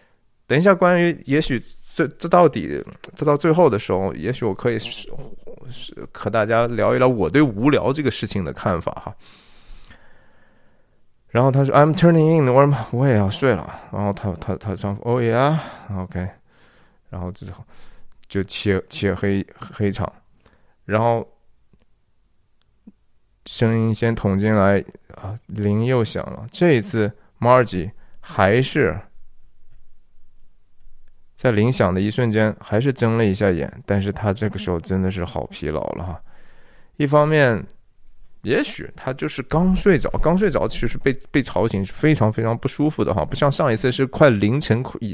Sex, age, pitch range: male, 20-39, 100-135 Hz